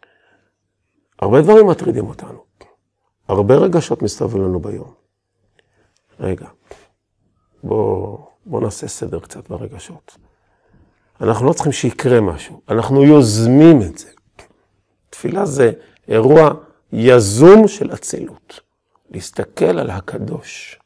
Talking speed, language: 100 wpm, Hebrew